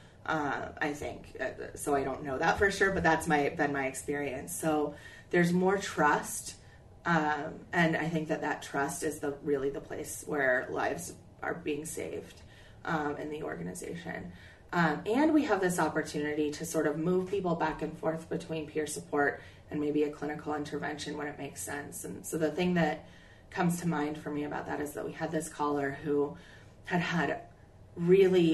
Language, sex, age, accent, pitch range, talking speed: English, female, 30-49, American, 140-160 Hz, 185 wpm